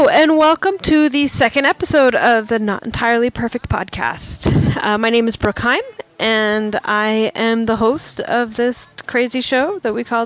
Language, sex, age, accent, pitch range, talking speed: English, female, 10-29, American, 215-285 Hz, 180 wpm